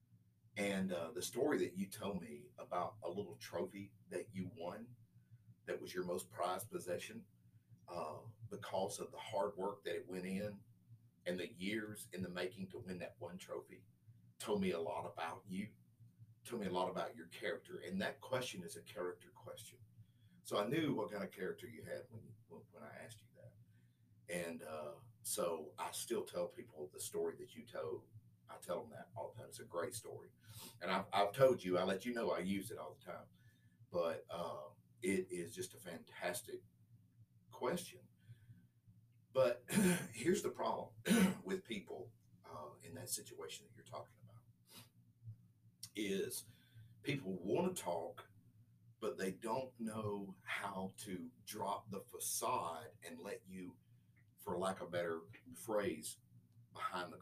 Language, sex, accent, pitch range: English, male, American, 100-120 Hz